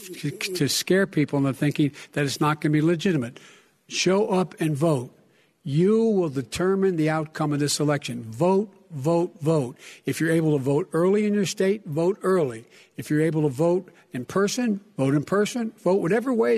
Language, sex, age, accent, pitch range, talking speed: English, male, 60-79, American, 145-195 Hz, 185 wpm